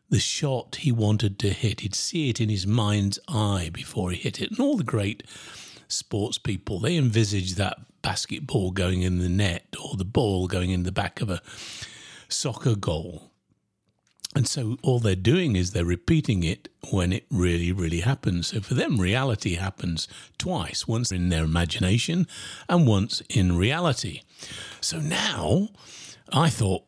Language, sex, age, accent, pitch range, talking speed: English, male, 50-69, British, 90-125 Hz, 165 wpm